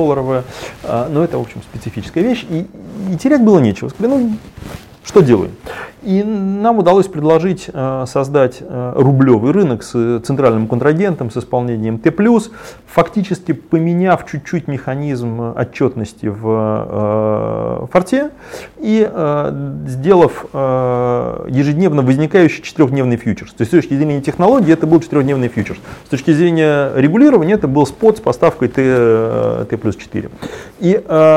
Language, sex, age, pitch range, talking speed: Turkish, male, 30-49, 115-160 Hz, 115 wpm